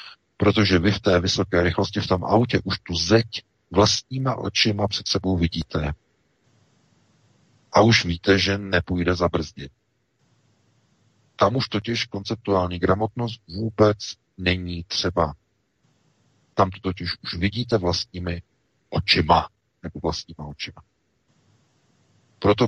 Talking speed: 110 wpm